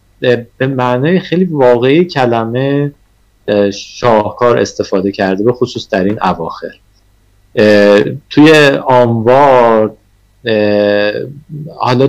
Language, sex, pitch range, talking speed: Persian, male, 105-135 Hz, 80 wpm